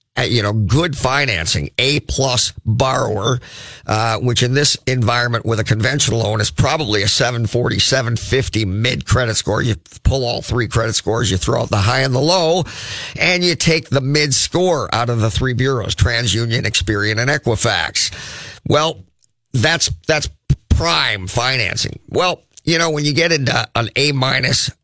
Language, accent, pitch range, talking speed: English, American, 115-145 Hz, 155 wpm